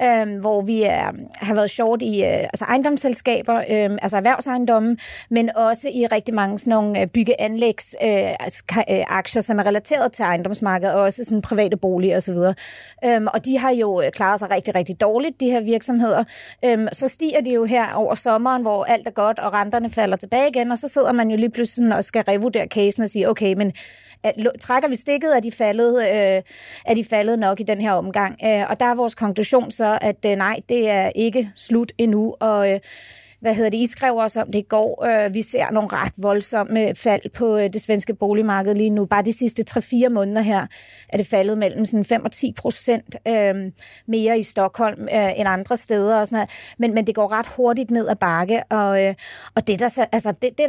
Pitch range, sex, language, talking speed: 205-235 Hz, female, Danish, 205 wpm